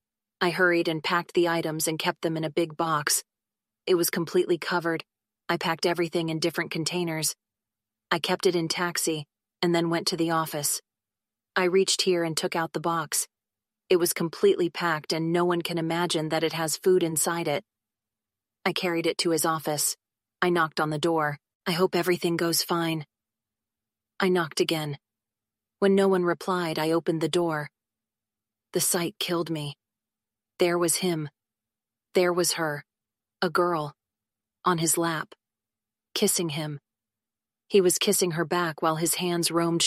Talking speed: 165 wpm